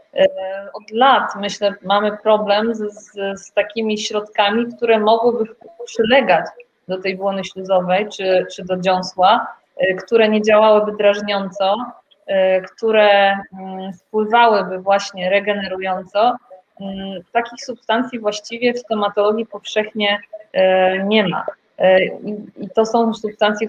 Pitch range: 200-230 Hz